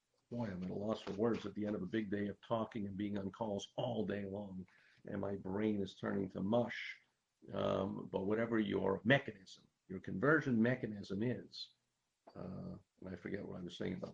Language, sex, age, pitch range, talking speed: English, male, 50-69, 100-125 Hz, 205 wpm